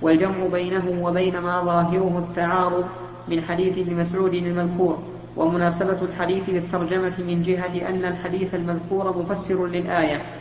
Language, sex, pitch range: Arabic, female, 175-190 Hz